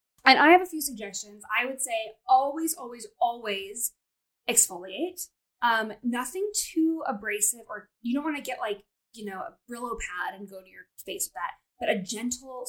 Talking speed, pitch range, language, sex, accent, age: 185 wpm, 210-265 Hz, English, female, American, 10-29